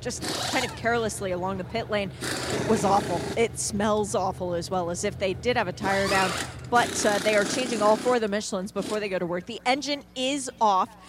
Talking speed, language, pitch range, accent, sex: 225 wpm, English, 190-220 Hz, American, female